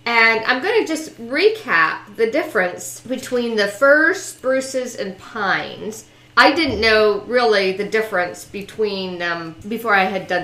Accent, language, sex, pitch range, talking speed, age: American, English, female, 195-260 Hz, 150 wpm, 50-69